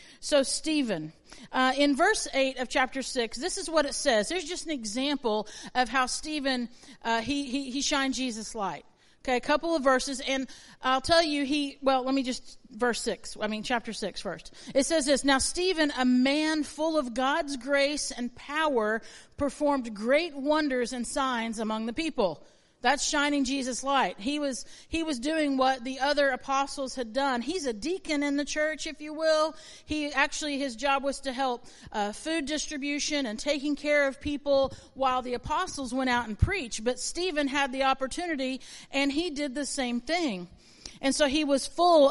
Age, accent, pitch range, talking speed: 50-69, American, 250-295 Hz, 190 wpm